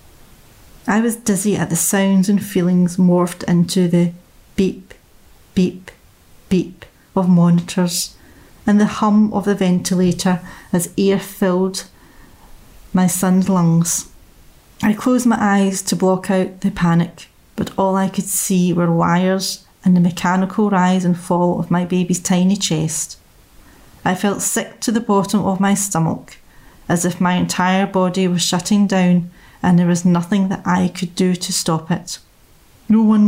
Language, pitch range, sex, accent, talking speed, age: English, 175-195 Hz, female, British, 155 wpm, 30-49